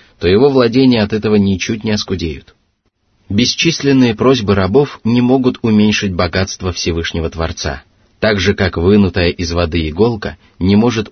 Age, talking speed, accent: 30-49, 140 wpm, native